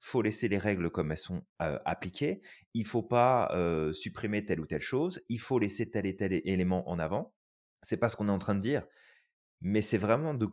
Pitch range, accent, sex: 90-120 Hz, French, male